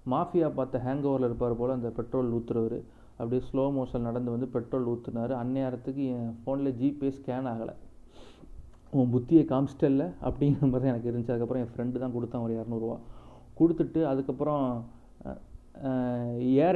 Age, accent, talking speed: 30-49, native, 145 wpm